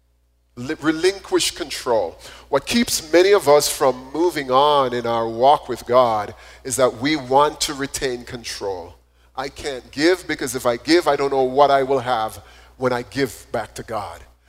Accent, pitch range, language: American, 95-145 Hz, English